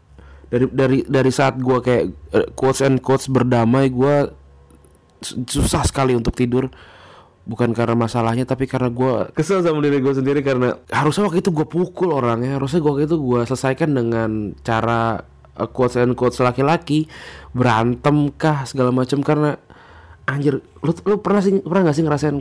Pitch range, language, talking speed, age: 115-140 Hz, Indonesian, 160 wpm, 20-39